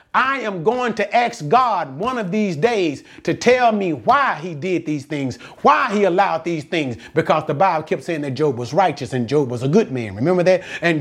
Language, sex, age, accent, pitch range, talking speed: English, male, 40-59, American, 180-245 Hz, 225 wpm